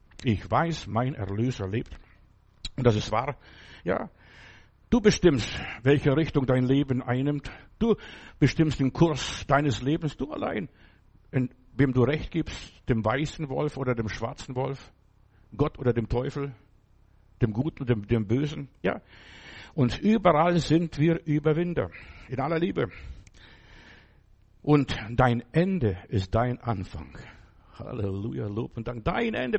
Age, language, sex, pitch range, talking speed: 60-79, German, male, 115-155 Hz, 135 wpm